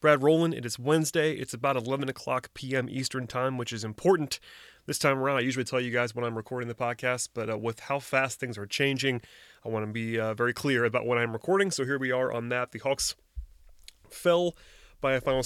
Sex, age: male, 30-49